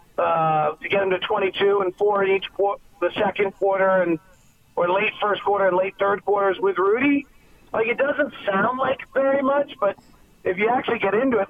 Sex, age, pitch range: male, 50-69, 175-225 Hz